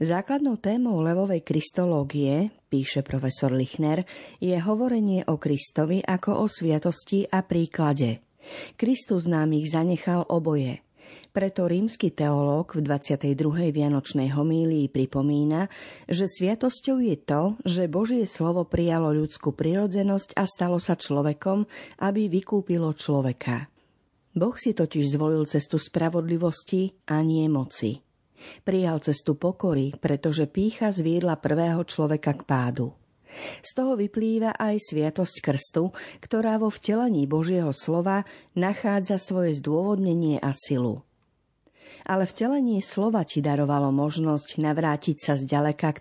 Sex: female